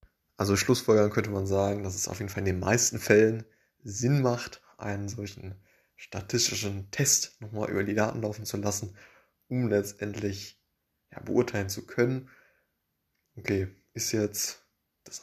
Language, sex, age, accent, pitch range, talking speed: German, male, 20-39, German, 100-120 Hz, 140 wpm